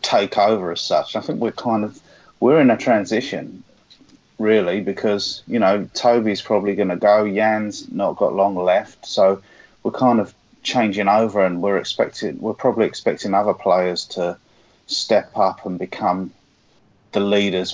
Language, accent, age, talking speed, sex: English, British, 30-49, 160 wpm, male